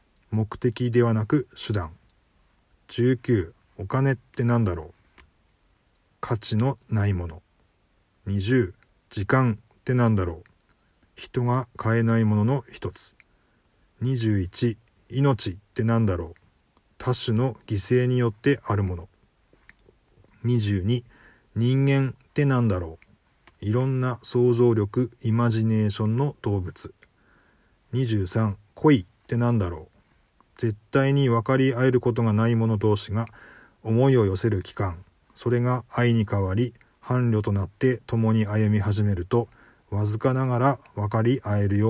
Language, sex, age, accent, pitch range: Japanese, male, 40-59, native, 100-120 Hz